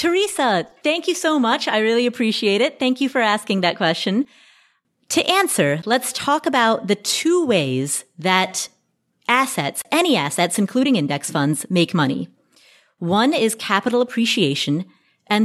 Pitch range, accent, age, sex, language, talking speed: 170-235 Hz, American, 30-49, female, English, 145 wpm